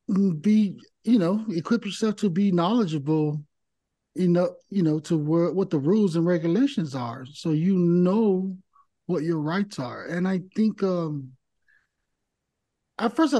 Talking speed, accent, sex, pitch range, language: 150 wpm, American, male, 155-200 Hz, English